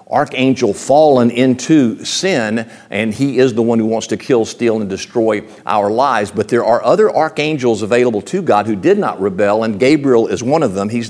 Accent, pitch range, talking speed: American, 115-145 Hz, 200 wpm